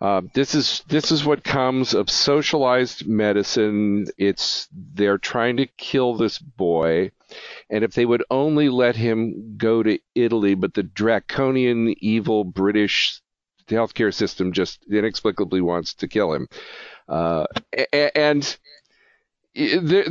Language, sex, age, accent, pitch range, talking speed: English, male, 50-69, American, 115-160 Hz, 130 wpm